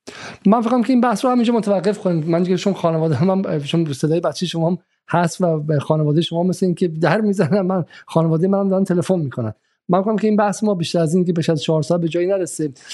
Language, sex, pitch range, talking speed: Persian, male, 140-170 Hz, 215 wpm